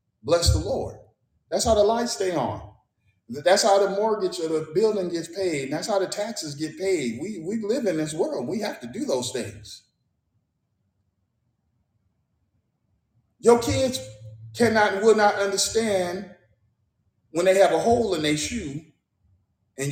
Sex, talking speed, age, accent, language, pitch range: male, 155 wpm, 40-59, American, English, 110-160 Hz